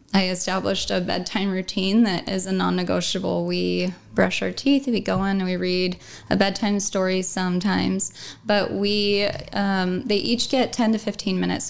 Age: 10-29